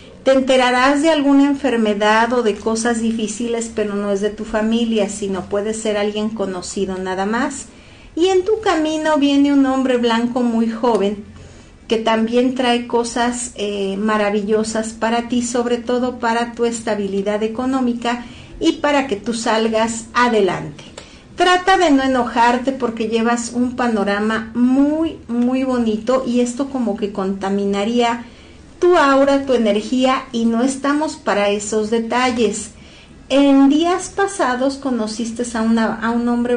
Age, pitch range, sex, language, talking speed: 50-69, 215-265 Hz, female, Spanish, 140 wpm